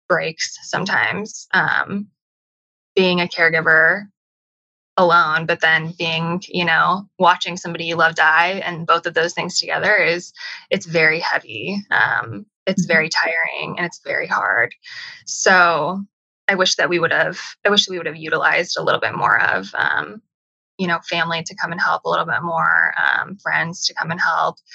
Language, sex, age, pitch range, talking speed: English, female, 20-39, 170-205 Hz, 170 wpm